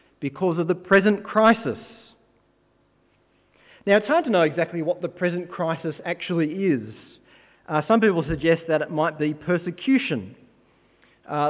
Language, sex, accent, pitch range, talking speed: English, male, Australian, 155-195 Hz, 140 wpm